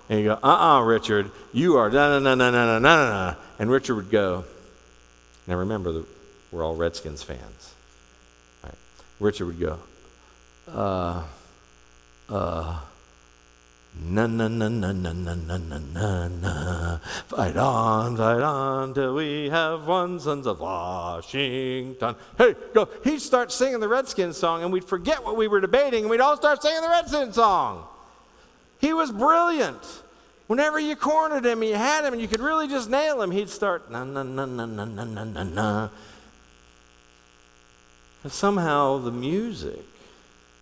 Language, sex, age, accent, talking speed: English, male, 50-69, American, 145 wpm